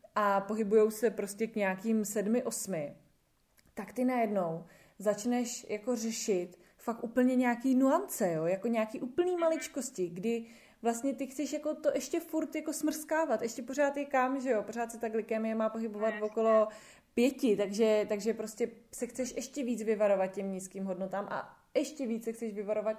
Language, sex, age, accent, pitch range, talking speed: Czech, female, 20-39, native, 205-255 Hz, 165 wpm